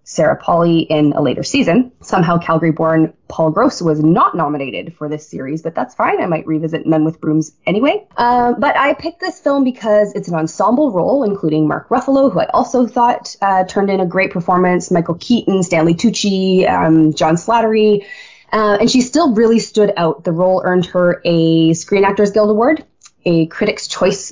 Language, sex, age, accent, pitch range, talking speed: English, female, 20-39, American, 160-210 Hz, 190 wpm